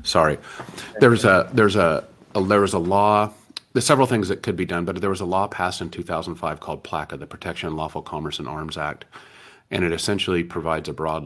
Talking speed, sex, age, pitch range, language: 225 wpm, male, 40-59, 75-90 Hz, English